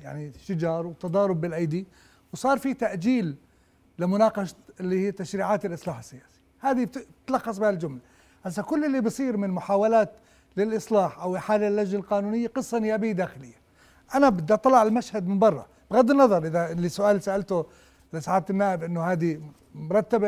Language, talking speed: Arabic, 135 wpm